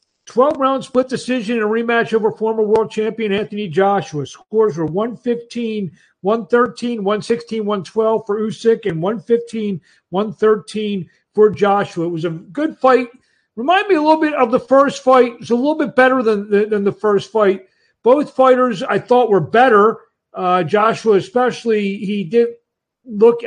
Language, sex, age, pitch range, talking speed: English, male, 50-69, 195-235 Hz, 160 wpm